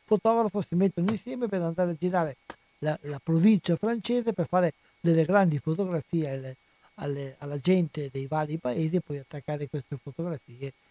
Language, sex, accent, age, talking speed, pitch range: Italian, male, native, 60-79, 150 wpm, 140-170 Hz